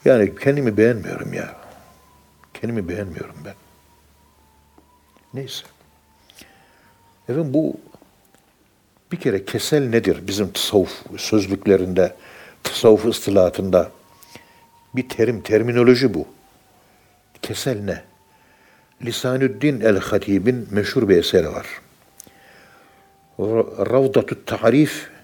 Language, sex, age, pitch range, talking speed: Turkish, male, 60-79, 80-115 Hz, 80 wpm